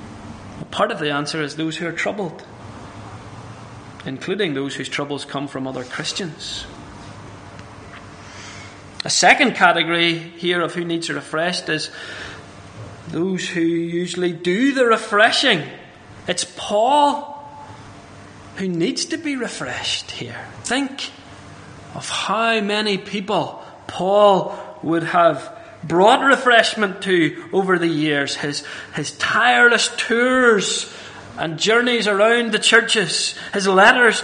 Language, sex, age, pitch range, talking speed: English, male, 30-49, 140-210 Hz, 115 wpm